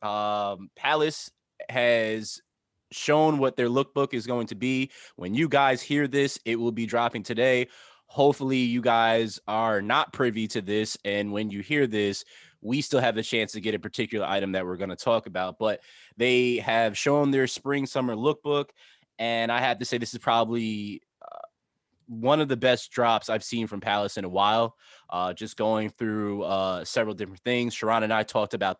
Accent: American